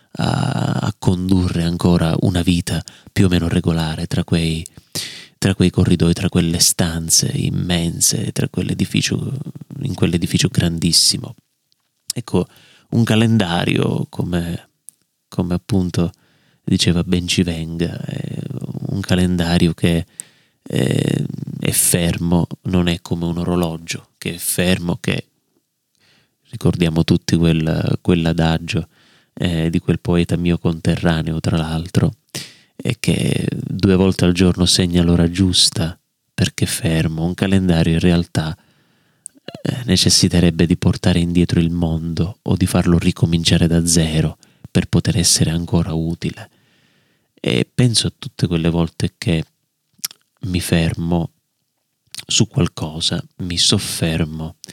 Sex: male